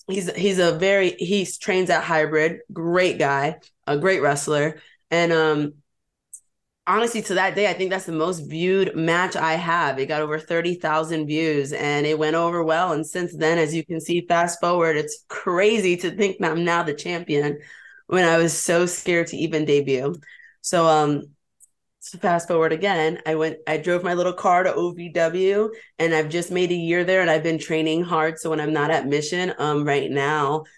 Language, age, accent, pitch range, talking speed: English, 20-39, American, 150-175 Hz, 195 wpm